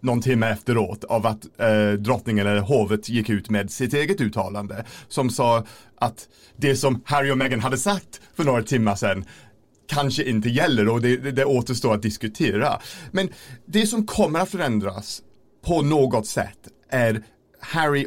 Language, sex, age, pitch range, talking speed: Swedish, male, 40-59, 105-135 Hz, 165 wpm